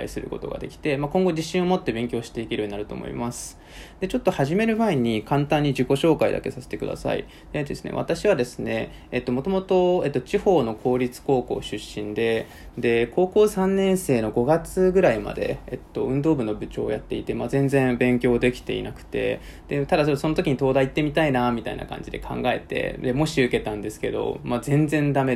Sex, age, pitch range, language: male, 20-39, 120-165 Hz, Japanese